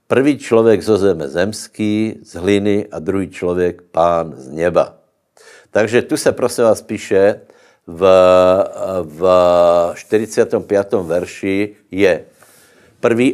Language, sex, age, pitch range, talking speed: Slovak, male, 60-79, 95-110 Hz, 110 wpm